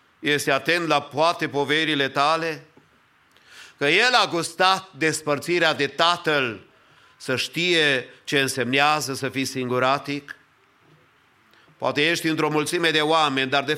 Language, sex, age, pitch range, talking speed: English, male, 50-69, 140-175 Hz, 120 wpm